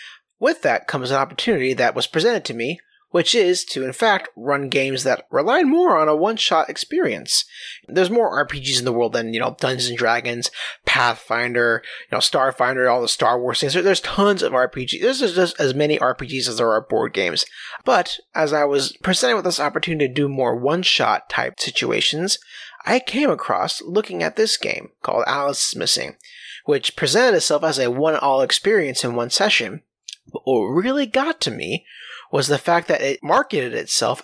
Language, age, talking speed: English, 30-49, 190 wpm